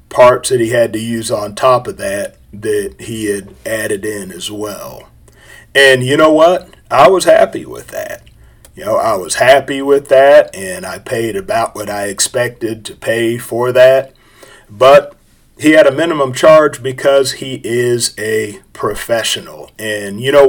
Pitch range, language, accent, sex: 115-145 Hz, English, American, male